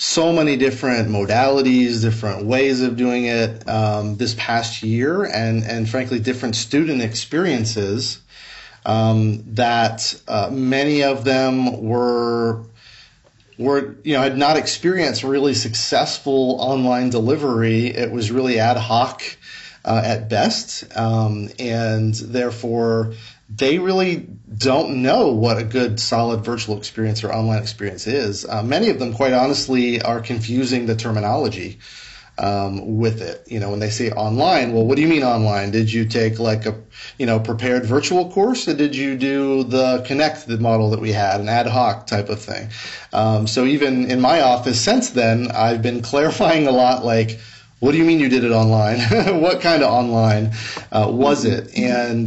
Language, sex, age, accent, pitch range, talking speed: English, male, 40-59, American, 110-130 Hz, 165 wpm